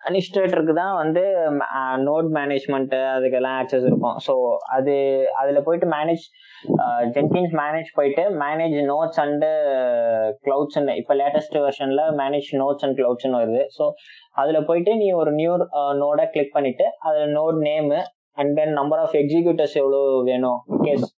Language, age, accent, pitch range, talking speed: Tamil, 20-39, native, 135-165 Hz, 140 wpm